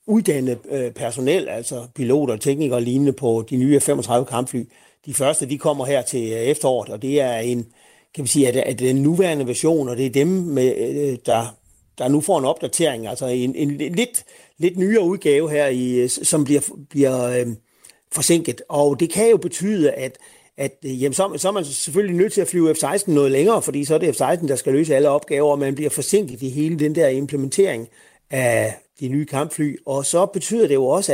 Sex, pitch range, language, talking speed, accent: male, 130-170 Hz, Danish, 210 wpm, native